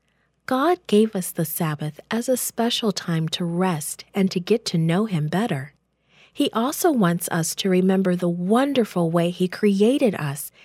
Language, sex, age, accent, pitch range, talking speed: English, female, 40-59, American, 160-220 Hz, 170 wpm